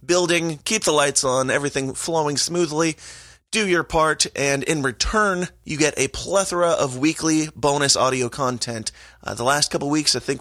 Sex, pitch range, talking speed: male, 125-155 Hz, 175 wpm